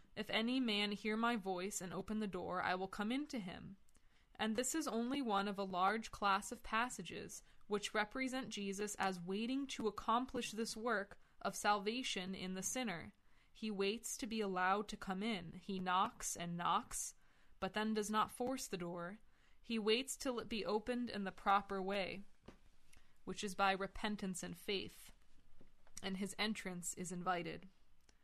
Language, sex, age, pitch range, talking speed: English, female, 20-39, 190-220 Hz, 170 wpm